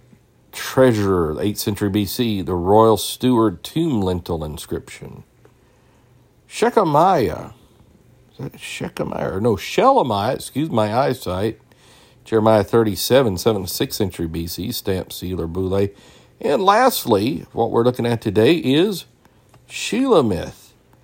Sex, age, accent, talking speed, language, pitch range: male, 50-69, American, 110 wpm, English, 90-120 Hz